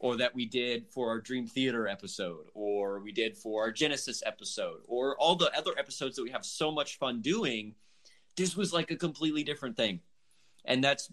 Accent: American